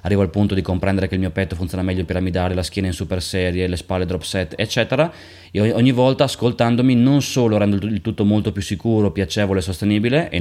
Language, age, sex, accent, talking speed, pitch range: Italian, 20-39, male, native, 225 wpm, 95-110 Hz